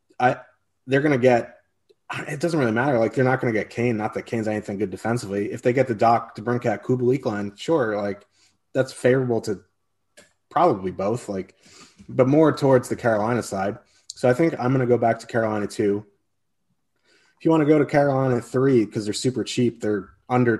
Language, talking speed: English, 190 wpm